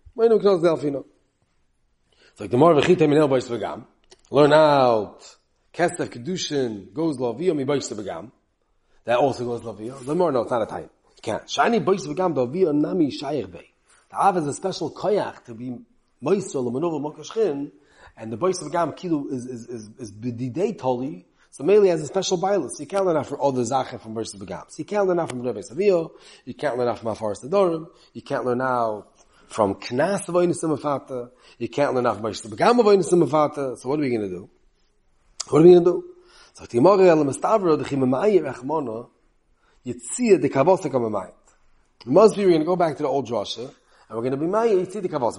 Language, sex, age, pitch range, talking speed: English, male, 30-49, 125-180 Hz, 150 wpm